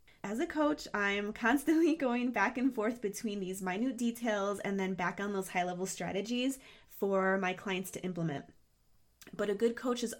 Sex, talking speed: female, 175 wpm